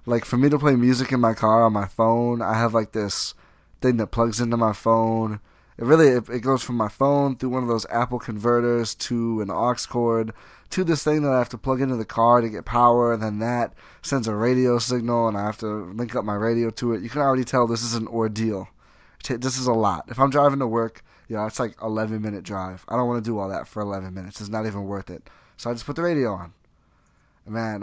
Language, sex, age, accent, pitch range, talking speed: English, male, 20-39, American, 110-125 Hz, 255 wpm